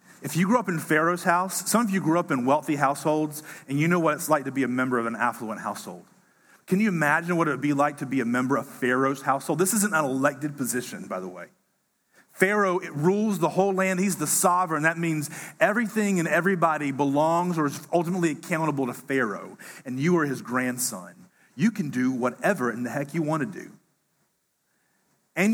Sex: male